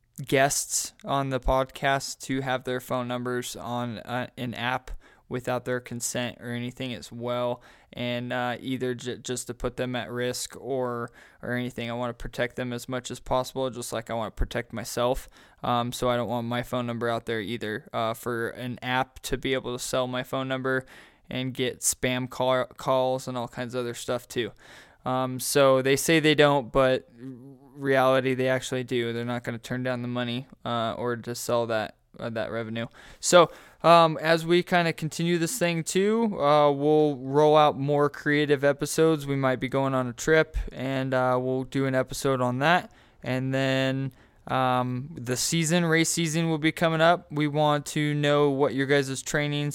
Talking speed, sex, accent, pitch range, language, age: 195 wpm, male, American, 120-140 Hz, English, 20-39